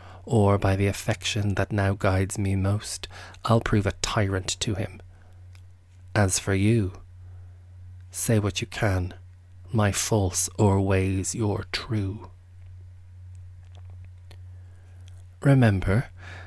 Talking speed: 105 wpm